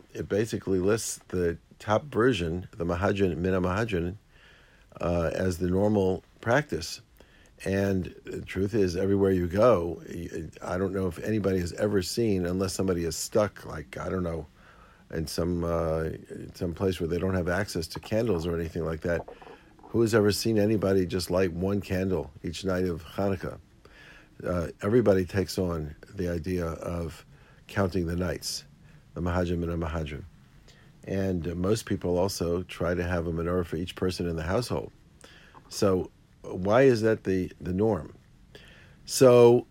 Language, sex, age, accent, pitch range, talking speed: English, male, 50-69, American, 85-105 Hz, 160 wpm